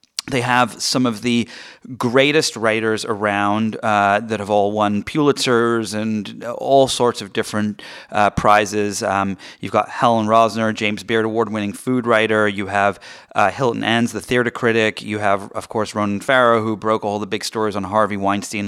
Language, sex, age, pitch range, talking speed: English, male, 30-49, 105-135 Hz, 175 wpm